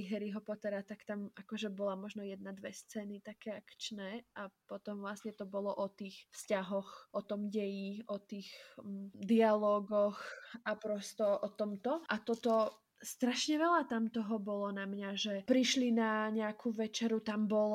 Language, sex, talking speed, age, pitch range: Slovak, female, 155 wpm, 20-39, 210-245 Hz